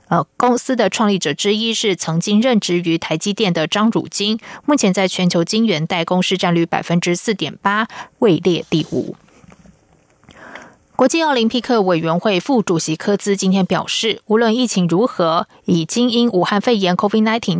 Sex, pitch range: female, 170-220 Hz